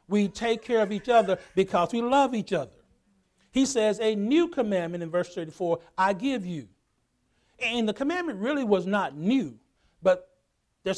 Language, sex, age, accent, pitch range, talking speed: English, male, 60-79, American, 165-235 Hz, 170 wpm